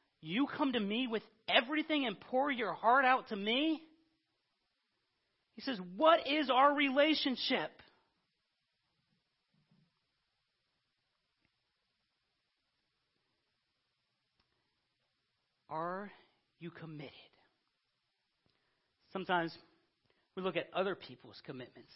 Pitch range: 160-230 Hz